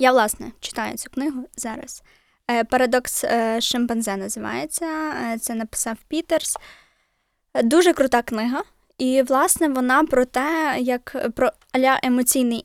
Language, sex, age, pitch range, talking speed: Ukrainian, female, 20-39, 230-260 Hz, 115 wpm